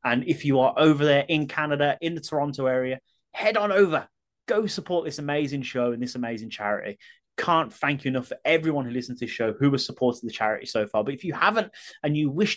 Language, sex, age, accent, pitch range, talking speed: English, male, 30-49, British, 125-175 Hz, 235 wpm